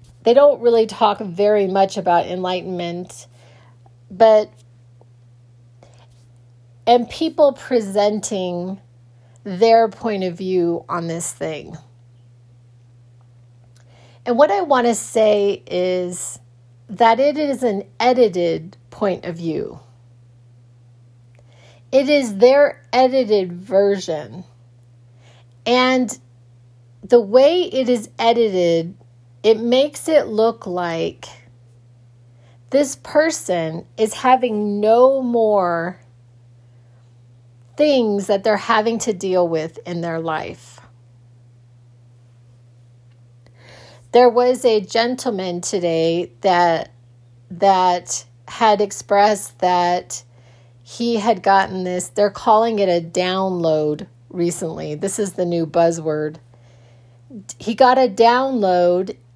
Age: 40-59